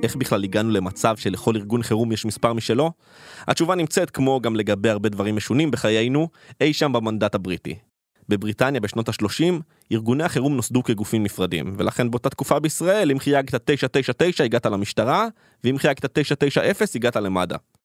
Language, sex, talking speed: Hebrew, male, 150 wpm